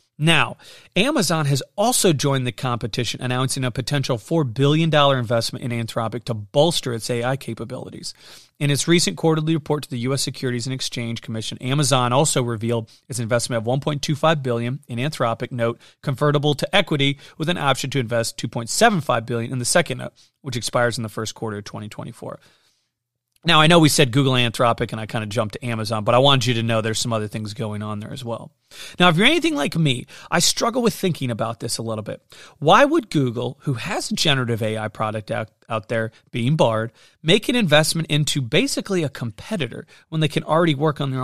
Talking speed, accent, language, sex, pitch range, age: 200 wpm, American, English, male, 120-155 Hz, 30-49